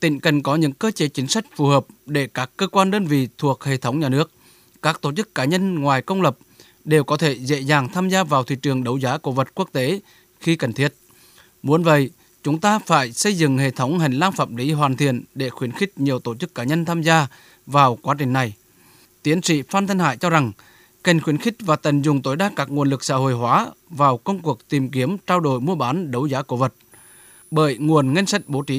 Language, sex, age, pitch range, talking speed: Vietnamese, male, 20-39, 135-170 Hz, 245 wpm